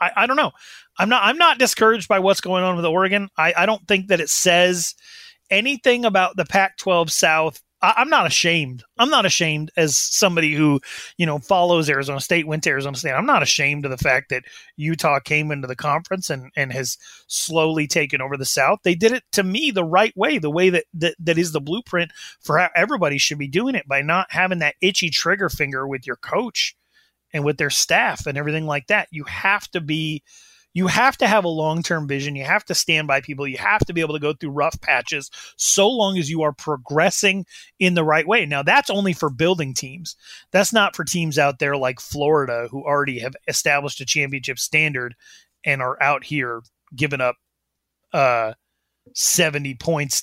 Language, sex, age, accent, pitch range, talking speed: English, male, 30-49, American, 145-185 Hz, 210 wpm